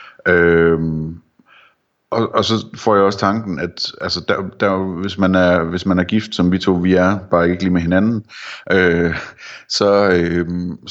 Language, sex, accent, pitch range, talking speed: Danish, male, native, 85-95 Hz, 175 wpm